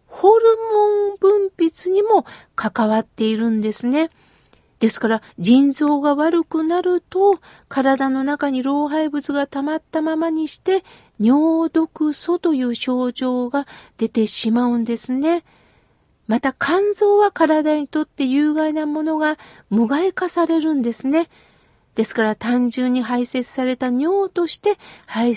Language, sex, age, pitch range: Japanese, female, 50-69, 240-335 Hz